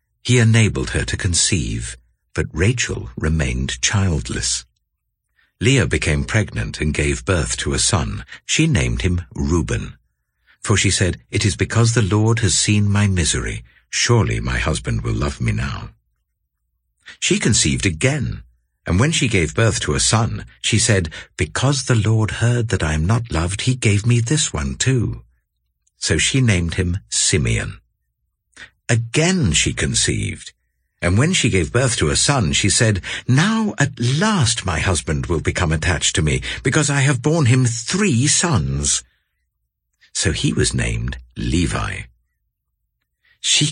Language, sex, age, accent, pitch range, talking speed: English, male, 60-79, British, 80-120 Hz, 150 wpm